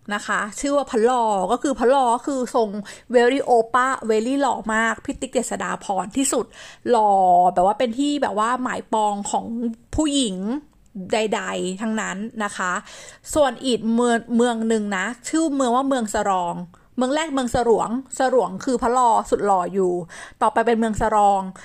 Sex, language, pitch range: female, Thai, 215-275 Hz